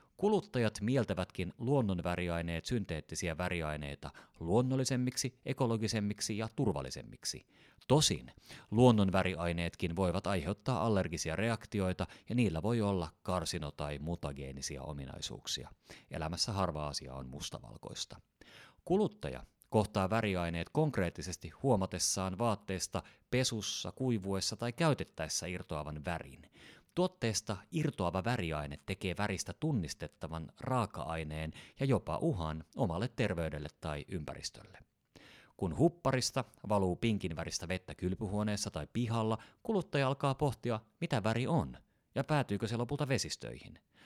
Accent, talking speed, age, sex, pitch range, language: native, 100 wpm, 30-49, male, 85-120 Hz, Finnish